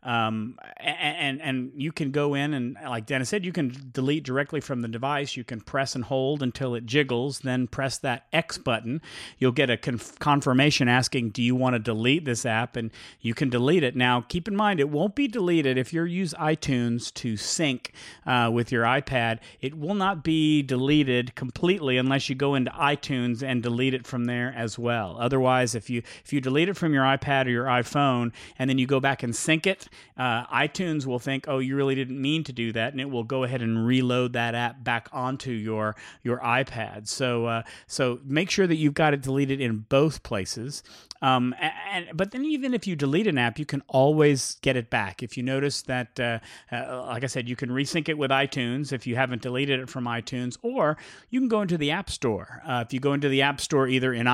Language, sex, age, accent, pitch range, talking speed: English, male, 40-59, American, 120-145 Hz, 220 wpm